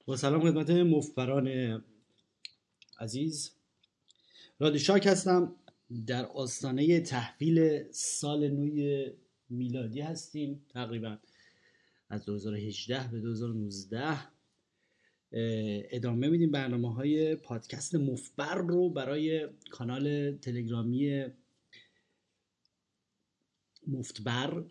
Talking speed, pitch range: 75 wpm, 120-155 Hz